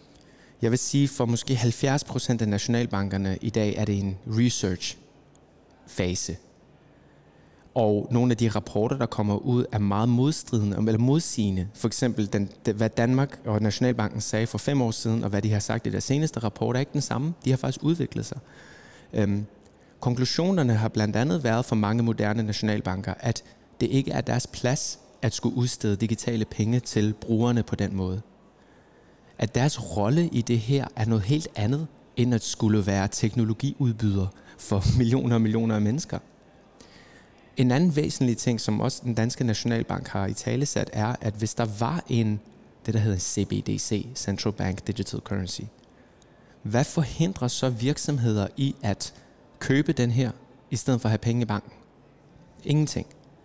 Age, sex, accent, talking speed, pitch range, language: 30-49, male, native, 165 wpm, 105-130 Hz, Danish